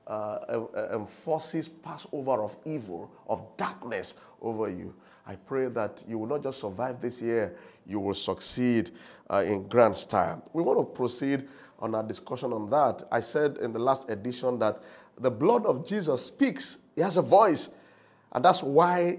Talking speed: 170 wpm